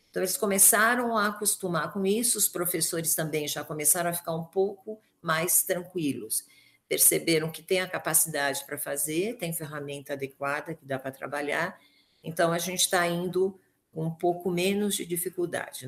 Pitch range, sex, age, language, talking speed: 145-185 Hz, female, 50-69, Portuguese, 165 wpm